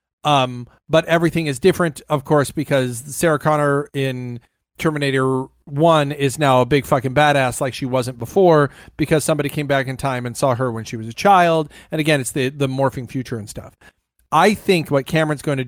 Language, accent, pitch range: English, American, 130-155 Hz